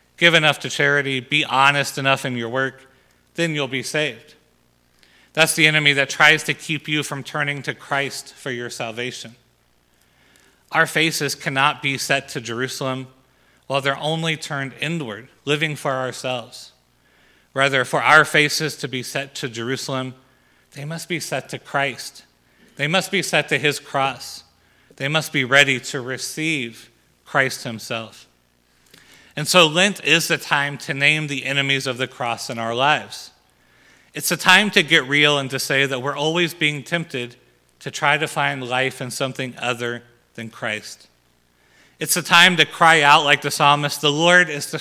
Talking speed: 170 wpm